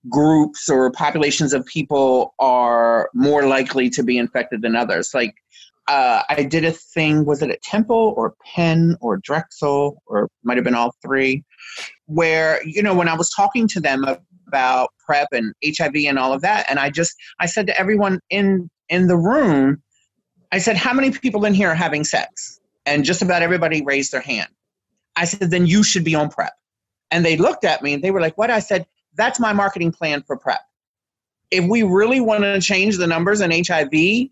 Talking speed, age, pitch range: 200 wpm, 30-49, 150-210 Hz